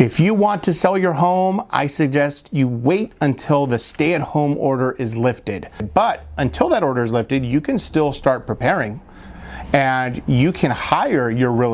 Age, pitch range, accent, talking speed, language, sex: 30-49, 120-165 Hz, American, 185 wpm, English, male